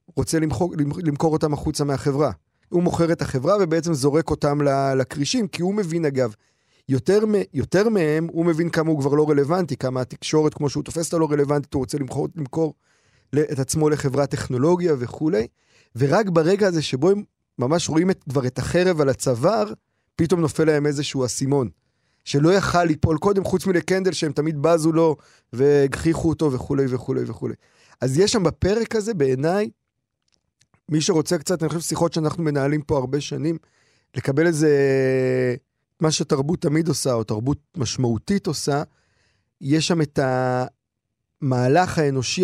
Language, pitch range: Hebrew, 135-165 Hz